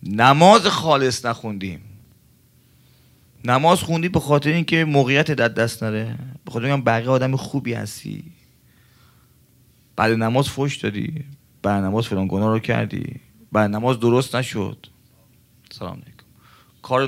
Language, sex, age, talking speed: Persian, male, 30-49, 125 wpm